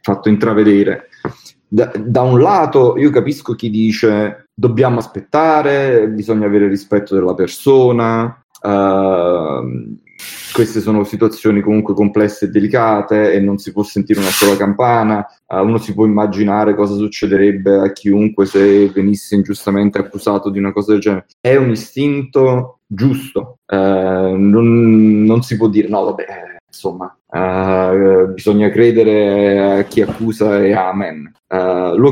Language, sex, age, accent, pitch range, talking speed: Italian, male, 20-39, native, 100-110 Hz, 140 wpm